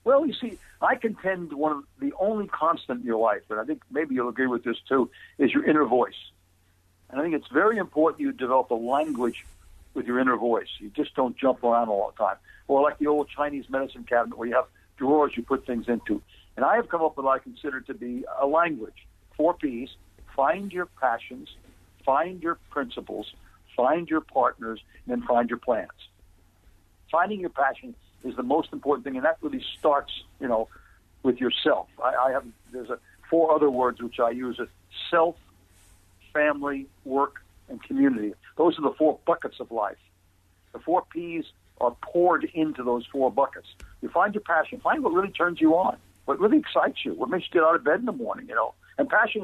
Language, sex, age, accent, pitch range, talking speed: English, male, 60-79, American, 115-160 Hz, 205 wpm